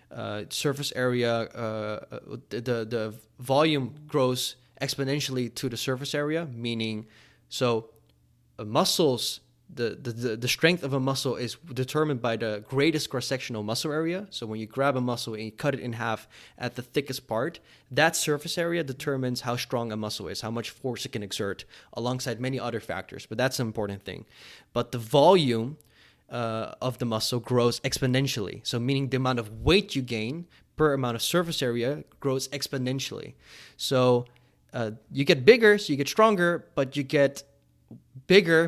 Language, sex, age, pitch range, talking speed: English, male, 20-39, 115-145 Hz, 170 wpm